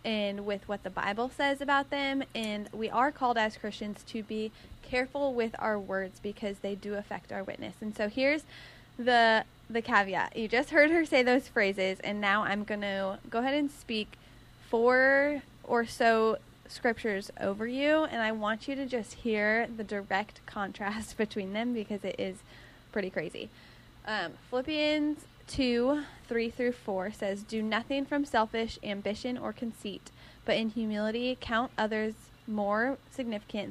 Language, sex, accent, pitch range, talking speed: English, female, American, 205-245 Hz, 160 wpm